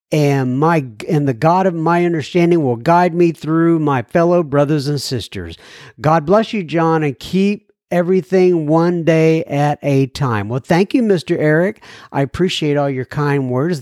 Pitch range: 135-180 Hz